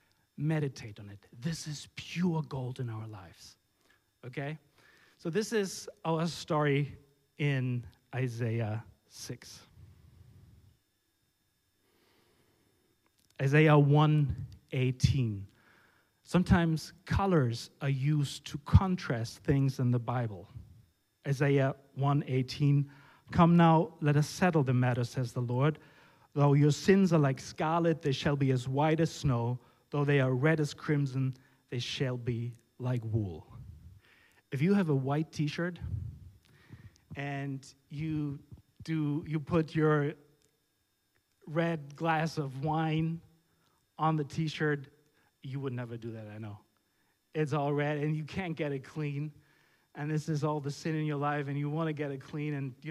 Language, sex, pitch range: German, male, 125-155 Hz